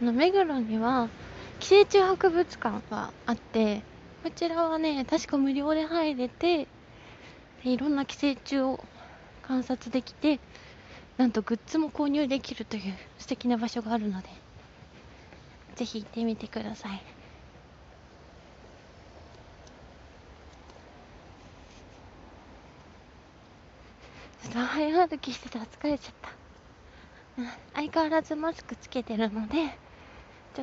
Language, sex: Japanese, female